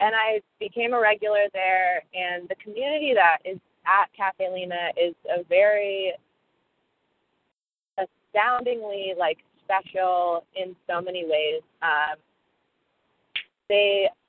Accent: American